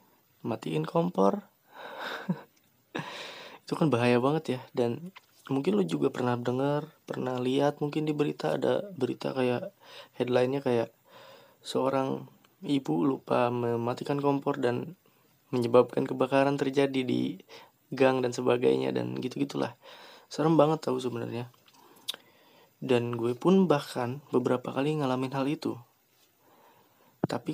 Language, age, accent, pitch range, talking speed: Indonesian, 20-39, native, 120-150 Hz, 115 wpm